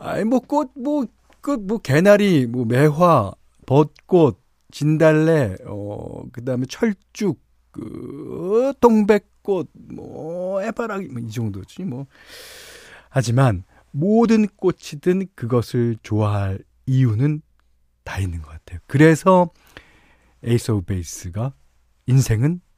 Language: Korean